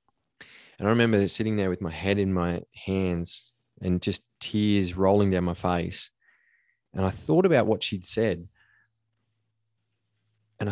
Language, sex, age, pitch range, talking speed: English, male, 20-39, 90-110 Hz, 145 wpm